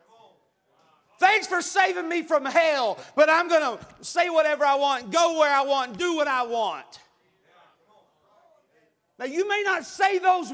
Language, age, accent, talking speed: English, 40-59, American, 160 wpm